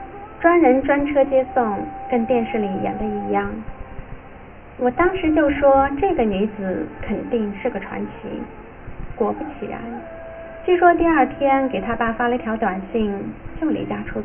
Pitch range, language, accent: 205-270 Hz, Chinese, native